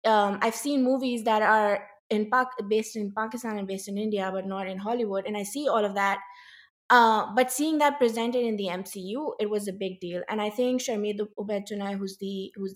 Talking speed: 215 wpm